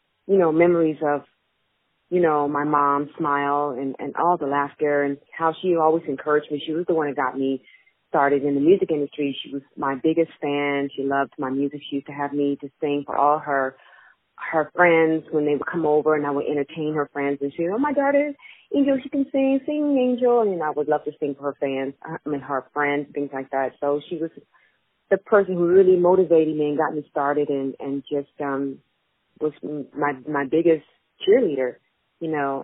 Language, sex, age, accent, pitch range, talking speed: English, female, 30-49, American, 140-160 Hz, 215 wpm